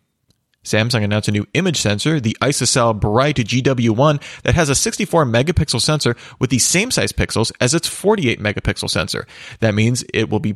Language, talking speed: English, 165 wpm